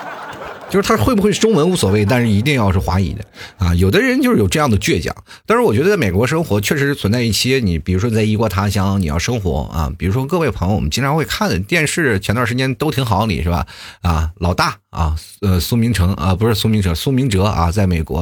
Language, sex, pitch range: Chinese, male, 95-145 Hz